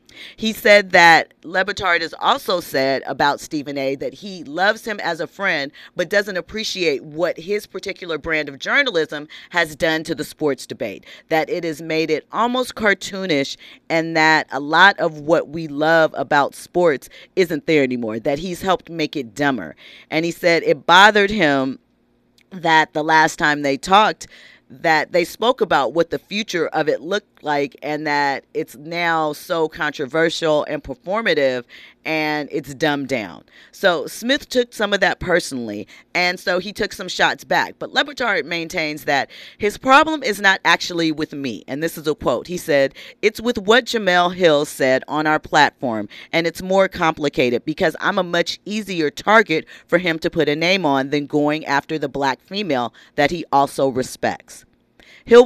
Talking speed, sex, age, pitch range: 175 wpm, female, 40-59, 150-185 Hz